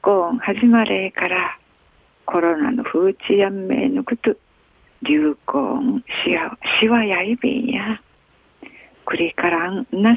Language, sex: Japanese, female